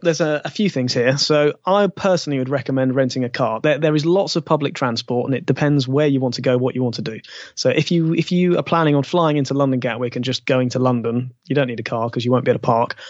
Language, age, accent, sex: English, 20-39, British, male